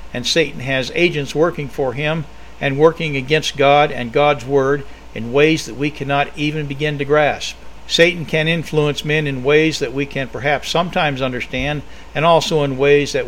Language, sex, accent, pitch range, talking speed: English, male, American, 130-160 Hz, 180 wpm